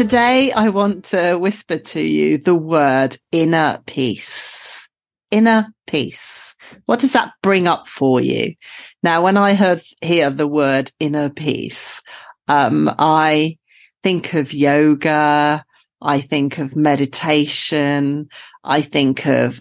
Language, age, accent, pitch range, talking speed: English, 40-59, British, 145-190 Hz, 125 wpm